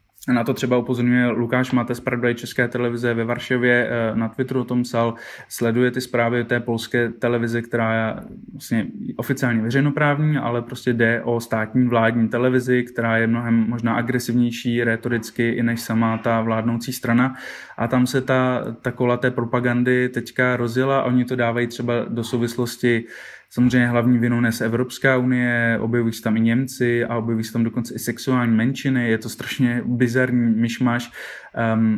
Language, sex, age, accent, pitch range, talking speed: Czech, male, 20-39, native, 115-125 Hz, 165 wpm